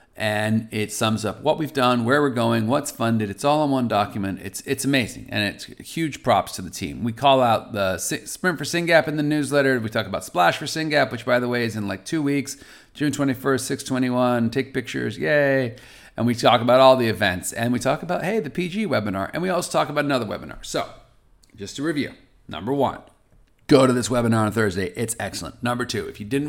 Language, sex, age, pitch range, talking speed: English, male, 40-59, 105-140 Hz, 225 wpm